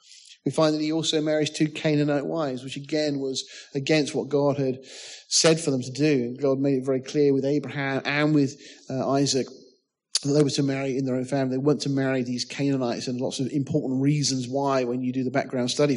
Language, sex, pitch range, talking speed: English, male, 130-155 Hz, 220 wpm